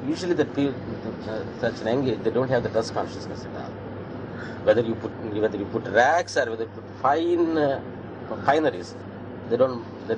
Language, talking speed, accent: English, 190 wpm, Indian